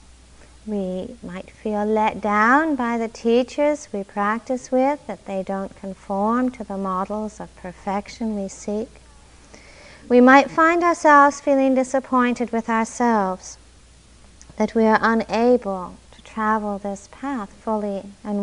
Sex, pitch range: female, 200-250 Hz